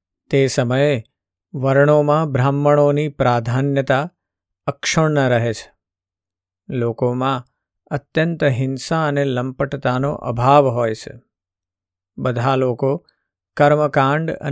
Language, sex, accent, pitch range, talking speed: Gujarati, male, native, 95-140 Hz, 55 wpm